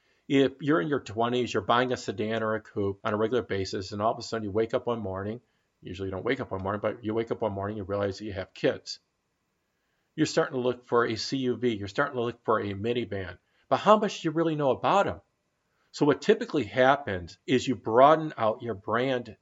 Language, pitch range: English, 105-125 Hz